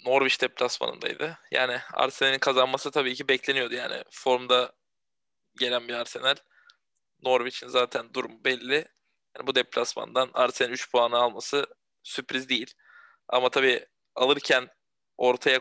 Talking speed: 115 wpm